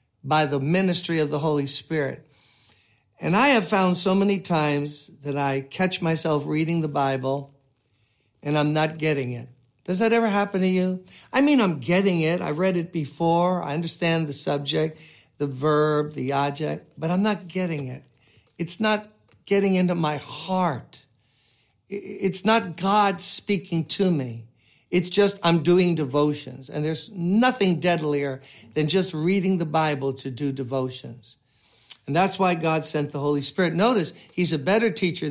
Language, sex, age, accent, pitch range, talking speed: English, male, 60-79, American, 140-180 Hz, 165 wpm